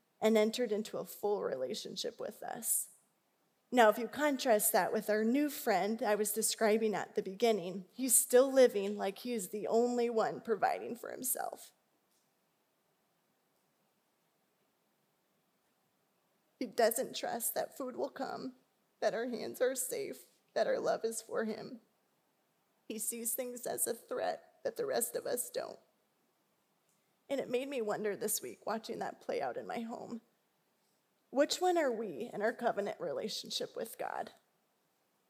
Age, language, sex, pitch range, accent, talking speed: 20-39, English, female, 215-270 Hz, American, 150 wpm